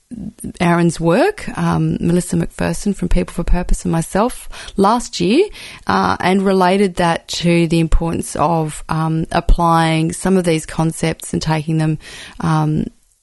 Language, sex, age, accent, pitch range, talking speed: English, female, 30-49, Australian, 160-185 Hz, 140 wpm